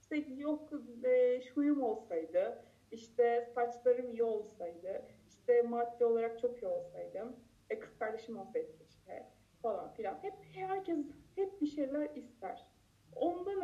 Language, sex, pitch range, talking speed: Turkish, female, 235-310 Hz, 130 wpm